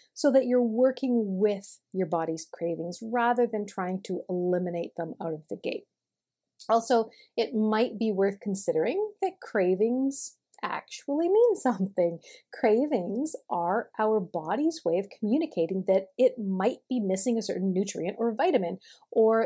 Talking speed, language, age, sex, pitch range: 145 wpm, English, 40-59, female, 190-255 Hz